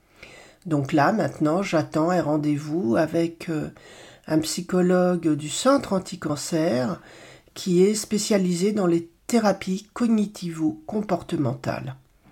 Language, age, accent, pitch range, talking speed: French, 50-69, French, 165-210 Hz, 95 wpm